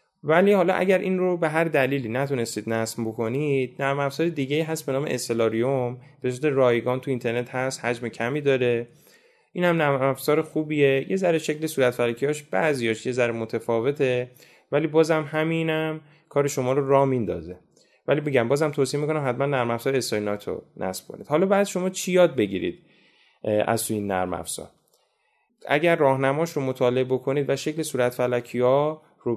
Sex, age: male, 10-29